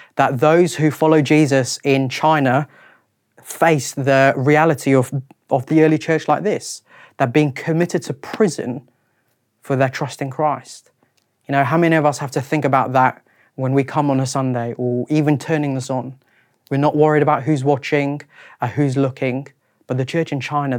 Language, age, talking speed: English, 30-49, 180 wpm